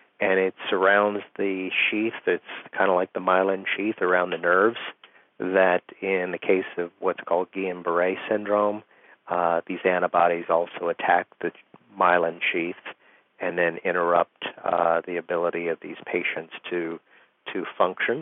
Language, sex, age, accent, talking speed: English, male, 40-59, American, 145 wpm